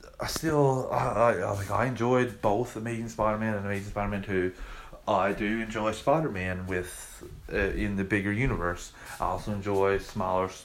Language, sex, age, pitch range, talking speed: English, male, 30-49, 95-110 Hz, 165 wpm